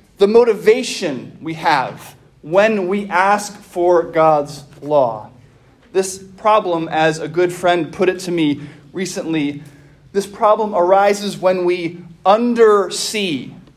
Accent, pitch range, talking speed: American, 175-235 Hz, 120 wpm